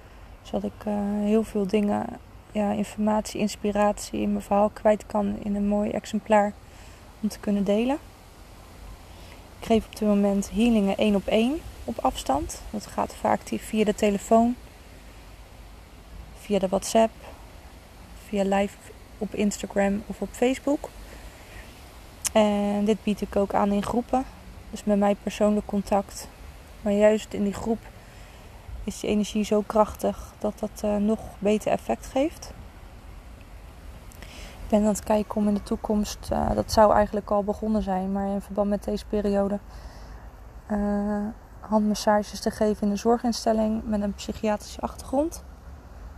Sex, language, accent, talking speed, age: female, Dutch, Dutch, 145 wpm, 20-39